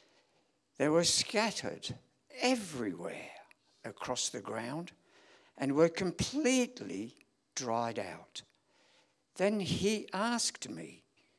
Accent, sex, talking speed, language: British, male, 85 wpm, English